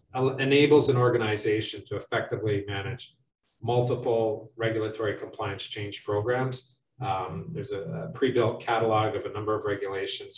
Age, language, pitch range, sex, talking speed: 40-59, English, 110-130 Hz, male, 120 wpm